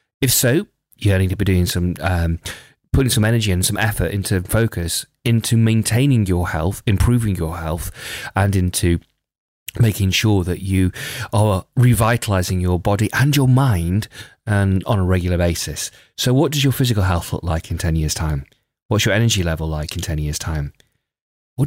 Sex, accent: male, British